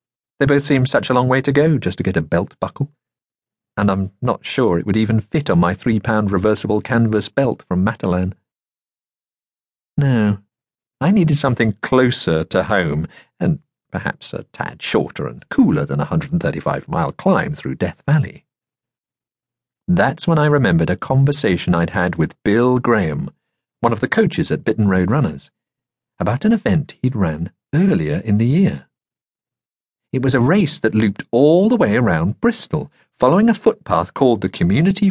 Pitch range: 105-150 Hz